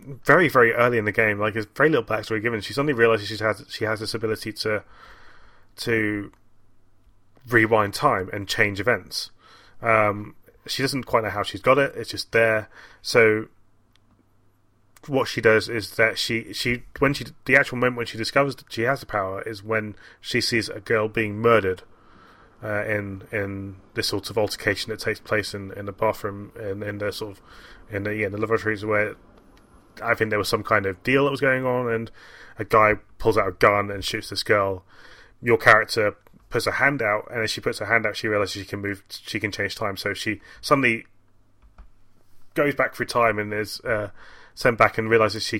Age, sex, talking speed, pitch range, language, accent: 30-49, male, 205 wpm, 100-115 Hz, English, British